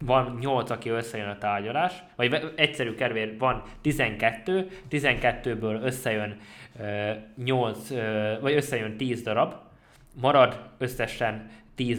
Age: 20-39